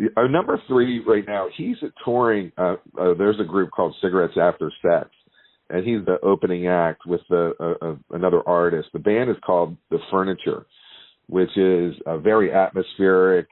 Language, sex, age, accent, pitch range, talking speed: English, male, 40-59, American, 85-105 Hz, 175 wpm